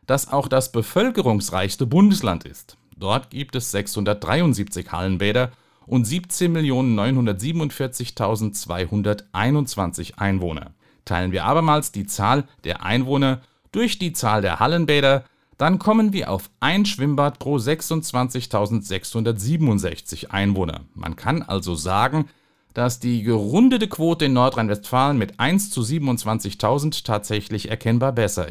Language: German